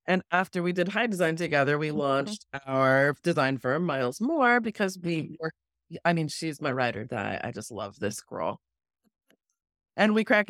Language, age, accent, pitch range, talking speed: English, 30-49, American, 155-215 Hz, 185 wpm